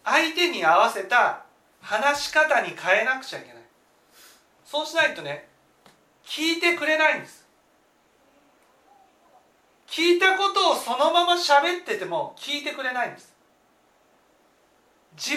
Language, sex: Japanese, male